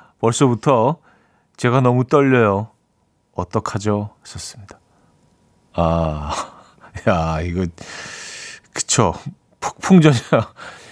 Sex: male